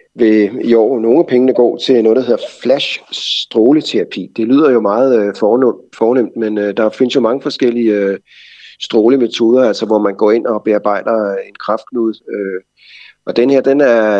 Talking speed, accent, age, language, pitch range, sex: 170 wpm, native, 30-49, Danish, 105-135 Hz, male